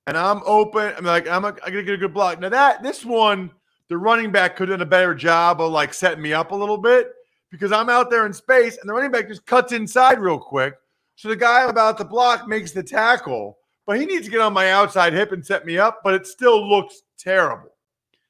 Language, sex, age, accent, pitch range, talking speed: English, male, 40-59, American, 170-220 Hz, 245 wpm